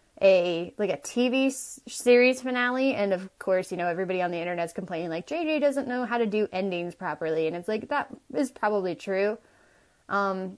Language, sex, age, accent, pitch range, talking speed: English, female, 20-39, American, 185-235 Hz, 195 wpm